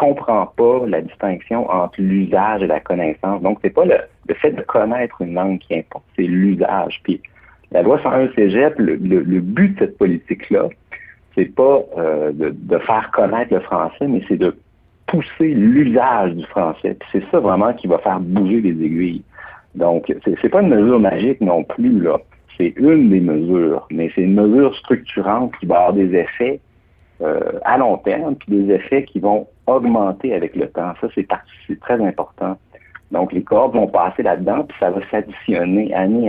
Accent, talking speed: French, 190 wpm